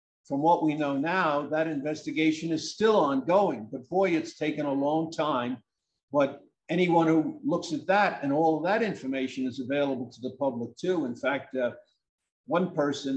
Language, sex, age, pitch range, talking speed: English, male, 50-69, 135-180 Hz, 180 wpm